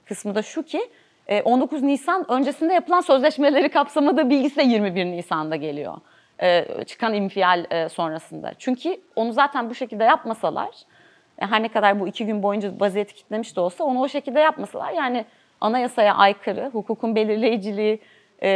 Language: Turkish